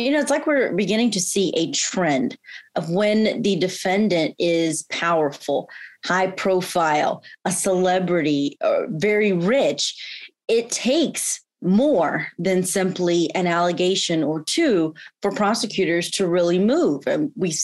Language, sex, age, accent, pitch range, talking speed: English, female, 30-49, American, 175-225 Hz, 135 wpm